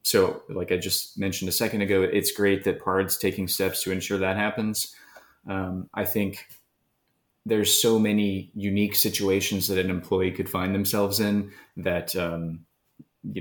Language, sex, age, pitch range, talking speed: English, male, 20-39, 85-100 Hz, 160 wpm